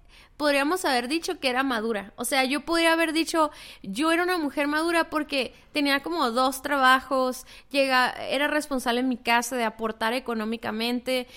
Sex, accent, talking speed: female, Mexican, 165 wpm